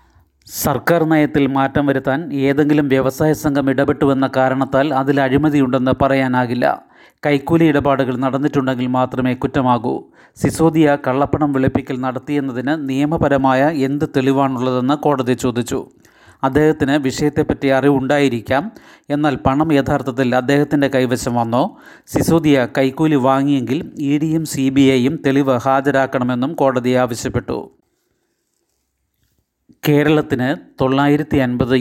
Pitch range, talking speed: 125-145 Hz, 90 wpm